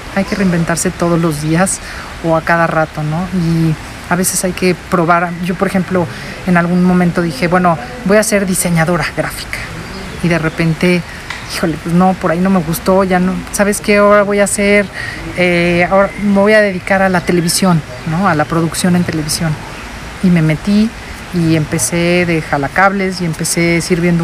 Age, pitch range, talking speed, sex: 40-59, 165-195 Hz, 185 wpm, female